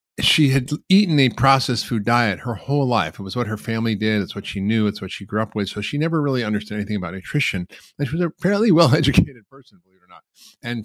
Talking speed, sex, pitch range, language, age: 255 wpm, male, 100-125 Hz, English, 40-59